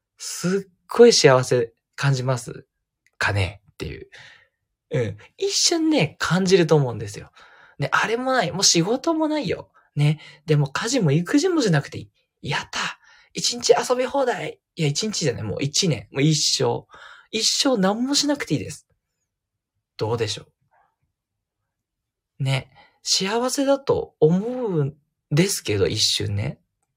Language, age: Japanese, 20-39